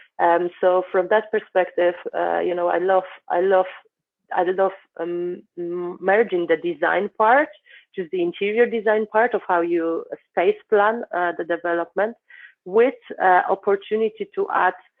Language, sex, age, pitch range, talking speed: English, female, 30-49, 170-200 Hz, 150 wpm